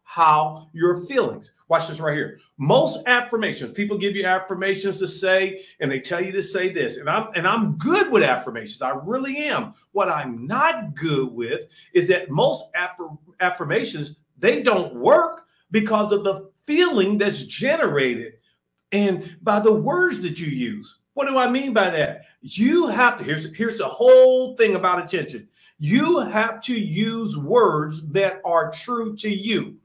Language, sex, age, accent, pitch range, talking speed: English, male, 50-69, American, 175-225 Hz, 165 wpm